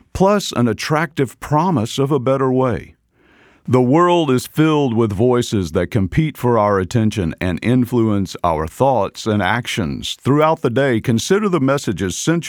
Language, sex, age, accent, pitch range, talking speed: English, male, 50-69, American, 105-130 Hz, 155 wpm